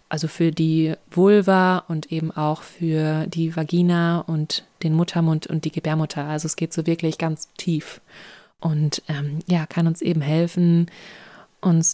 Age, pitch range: 20-39, 165-195 Hz